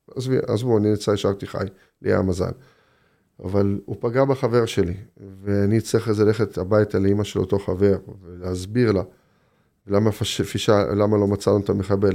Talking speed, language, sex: 155 wpm, Hebrew, male